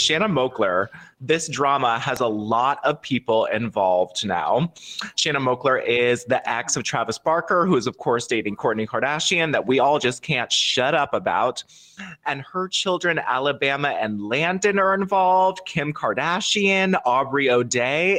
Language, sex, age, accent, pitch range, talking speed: English, male, 30-49, American, 120-165 Hz, 150 wpm